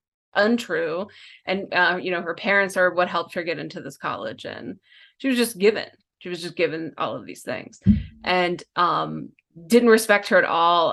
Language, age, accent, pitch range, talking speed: English, 20-39, American, 175-205 Hz, 190 wpm